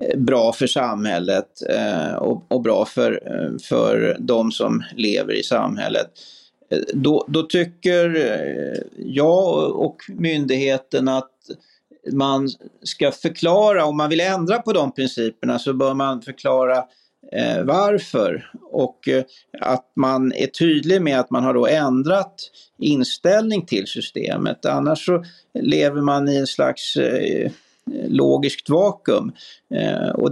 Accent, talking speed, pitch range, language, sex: native, 125 wpm, 130-180 Hz, Swedish, male